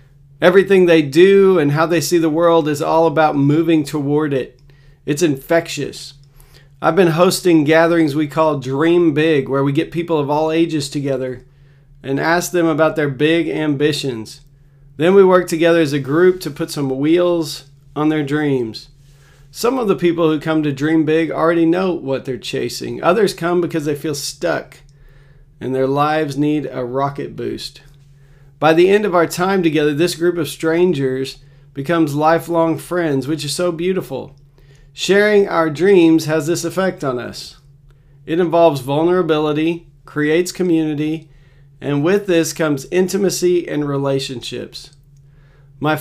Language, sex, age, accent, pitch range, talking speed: English, male, 40-59, American, 140-170 Hz, 155 wpm